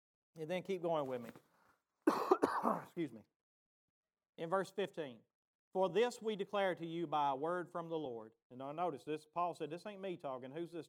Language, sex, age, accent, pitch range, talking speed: English, male, 40-59, American, 165-220 Hz, 195 wpm